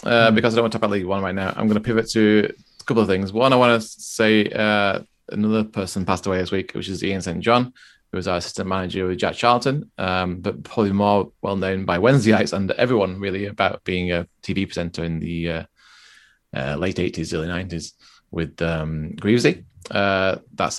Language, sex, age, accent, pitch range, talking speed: English, male, 20-39, British, 85-110 Hz, 215 wpm